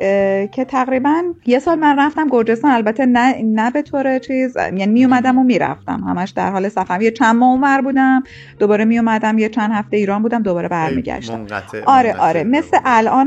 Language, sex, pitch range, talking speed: Persian, female, 195-255 Hz, 180 wpm